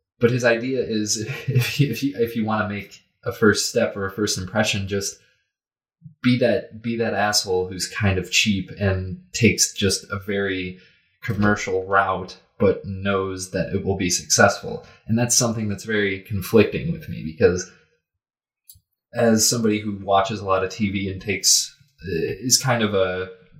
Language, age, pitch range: English, 20-39, 95-115 Hz